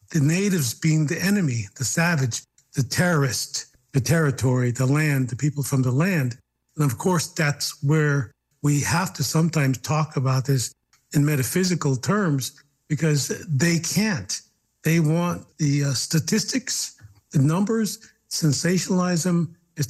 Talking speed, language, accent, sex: 140 wpm, English, American, male